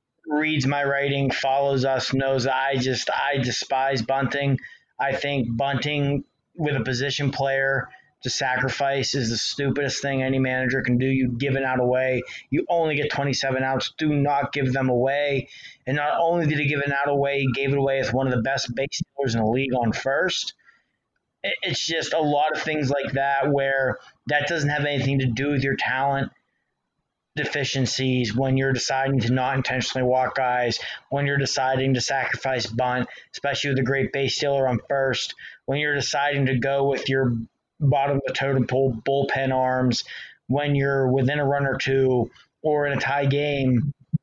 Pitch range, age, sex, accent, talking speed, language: 130-140 Hz, 30-49, male, American, 180 wpm, English